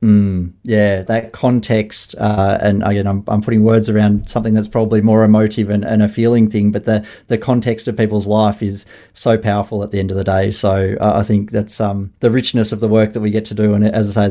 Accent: Australian